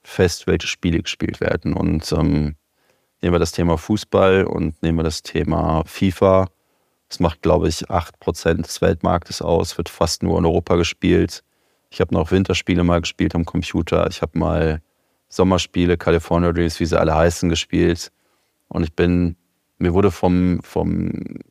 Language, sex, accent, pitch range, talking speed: German, male, German, 80-90 Hz, 160 wpm